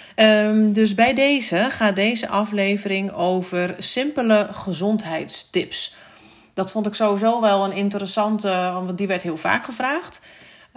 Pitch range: 175-215 Hz